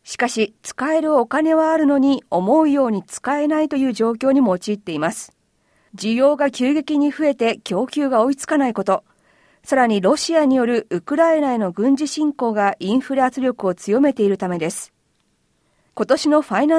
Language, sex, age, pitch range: Japanese, female, 40-59, 215-290 Hz